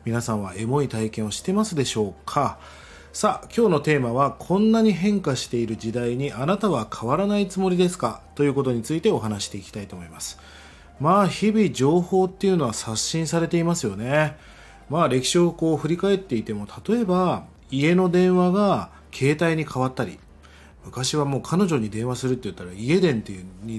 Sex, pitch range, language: male, 110-175 Hz, Japanese